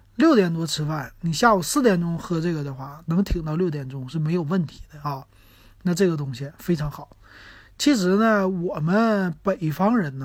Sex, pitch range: male, 145-205 Hz